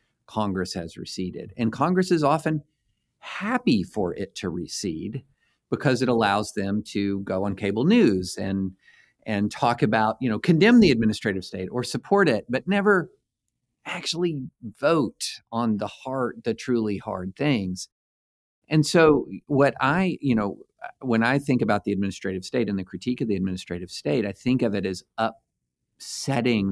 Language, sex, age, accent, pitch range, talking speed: English, male, 50-69, American, 95-125 Hz, 160 wpm